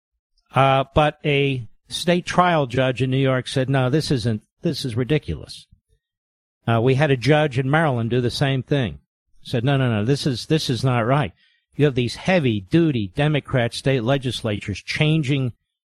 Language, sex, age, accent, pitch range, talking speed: English, male, 50-69, American, 105-155 Hz, 175 wpm